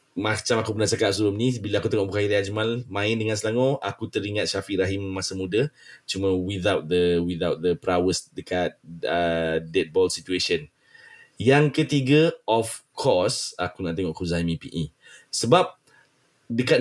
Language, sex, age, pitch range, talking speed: Malay, male, 20-39, 90-120 Hz, 155 wpm